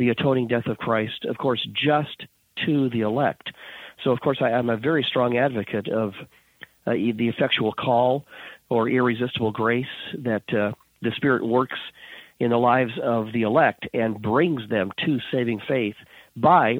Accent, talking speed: American, 160 wpm